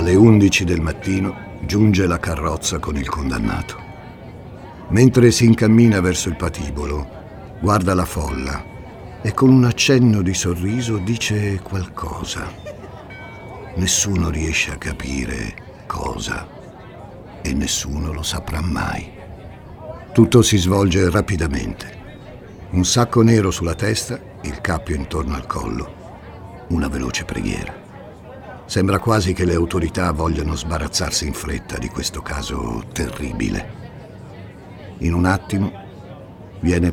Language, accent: Italian, native